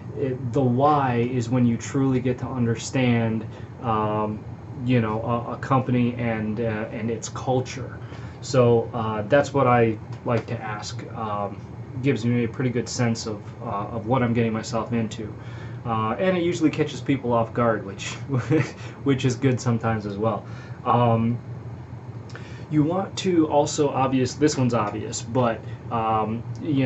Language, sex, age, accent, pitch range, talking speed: English, male, 20-39, American, 115-130 Hz, 155 wpm